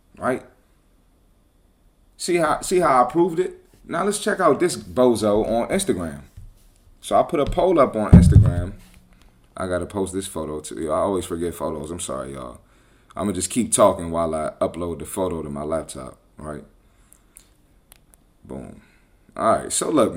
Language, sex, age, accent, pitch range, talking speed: English, male, 30-49, American, 85-115 Hz, 170 wpm